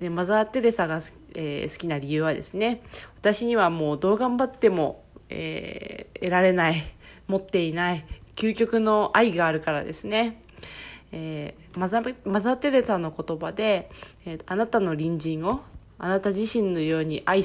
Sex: female